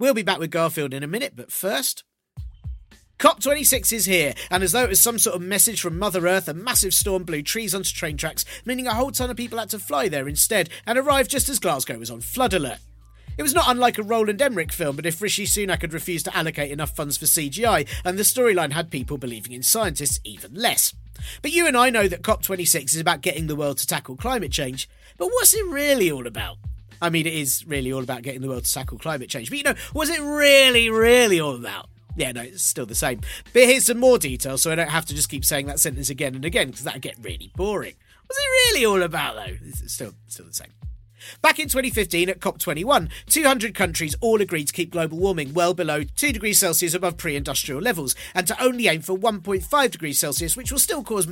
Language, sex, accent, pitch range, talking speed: English, male, British, 150-230 Hz, 235 wpm